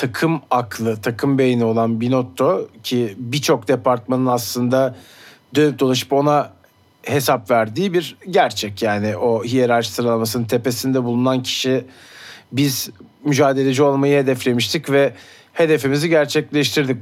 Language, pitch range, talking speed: Turkish, 120-145 Hz, 110 wpm